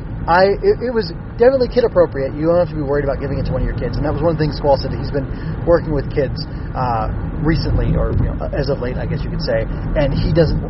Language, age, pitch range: English, 20-39, 125-155 Hz